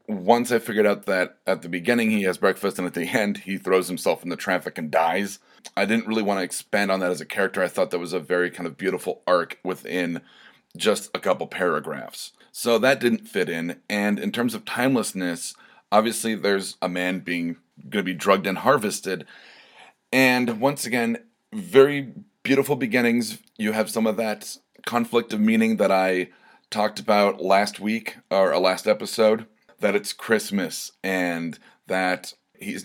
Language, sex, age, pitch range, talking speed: English, male, 30-49, 90-110 Hz, 180 wpm